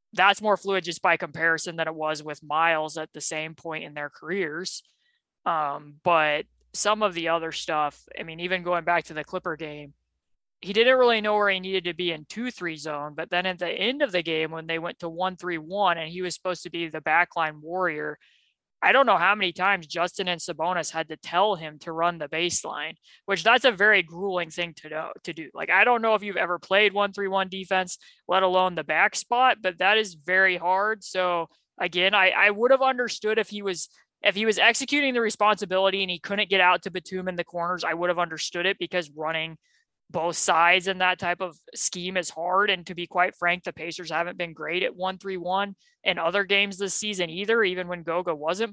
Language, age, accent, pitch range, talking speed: English, 20-39, American, 165-195 Hz, 225 wpm